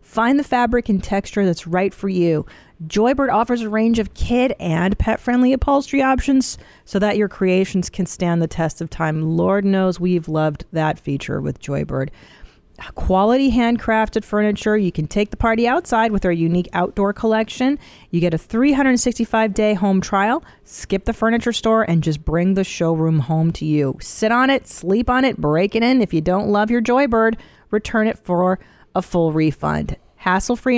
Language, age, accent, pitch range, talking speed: English, 40-59, American, 170-235 Hz, 175 wpm